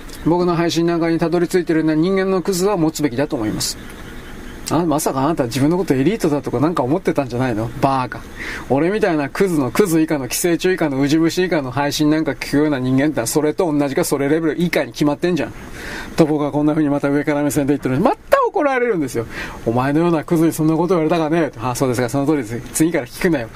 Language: Japanese